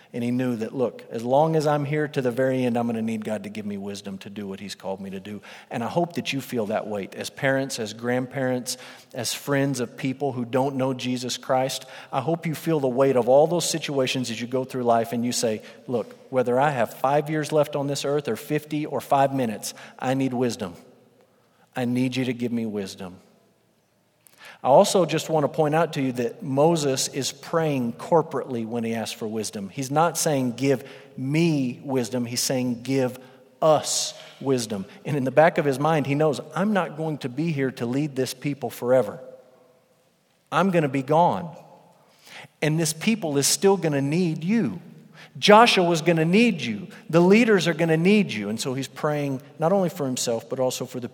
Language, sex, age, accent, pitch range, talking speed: English, male, 40-59, American, 125-160 Hz, 215 wpm